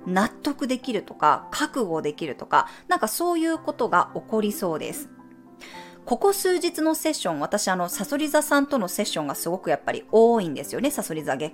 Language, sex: Japanese, female